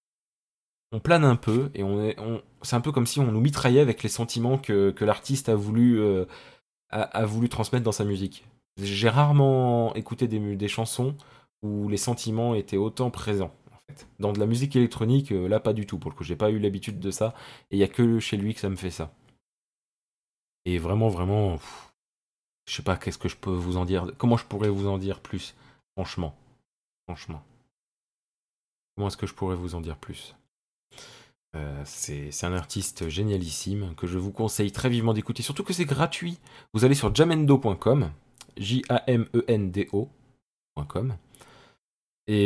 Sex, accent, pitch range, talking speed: male, French, 100-125 Hz, 185 wpm